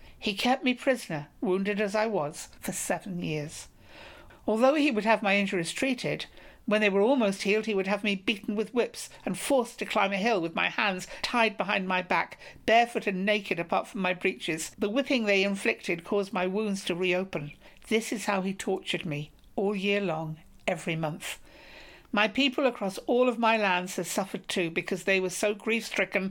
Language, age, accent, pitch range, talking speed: English, 60-79, British, 180-215 Hz, 195 wpm